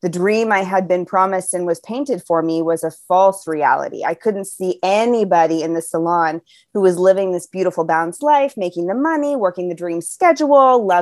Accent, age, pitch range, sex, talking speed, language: American, 20-39, 180-235 Hz, female, 195 wpm, English